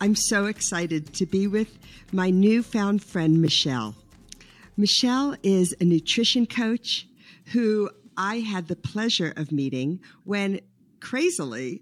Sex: female